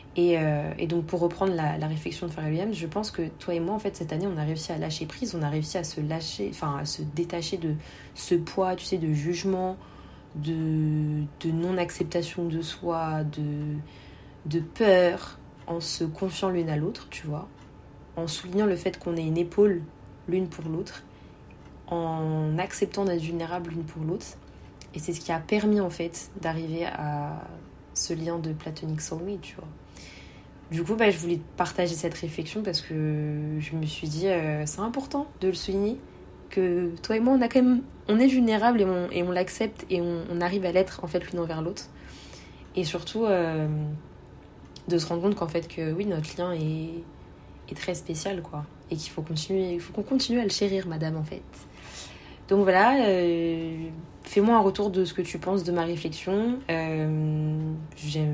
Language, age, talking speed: French, 20-39, 195 wpm